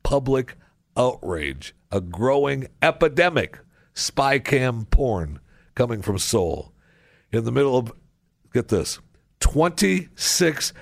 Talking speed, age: 105 wpm, 60-79